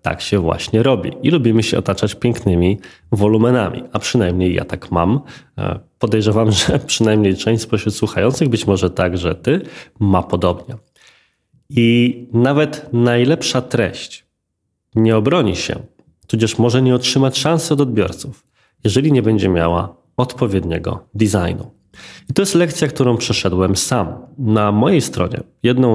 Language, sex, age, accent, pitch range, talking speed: Polish, male, 20-39, native, 95-130 Hz, 135 wpm